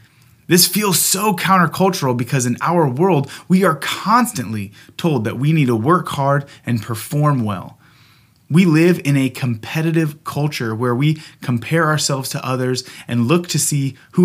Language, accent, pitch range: English, American, 120-155 Hz